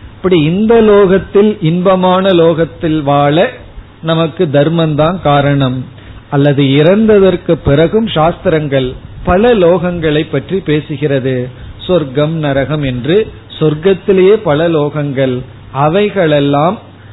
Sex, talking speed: male, 75 wpm